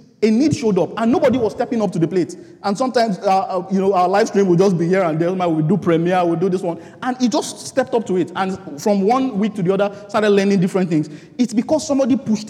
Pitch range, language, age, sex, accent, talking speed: 170-225 Hz, English, 30-49, male, Nigerian, 260 wpm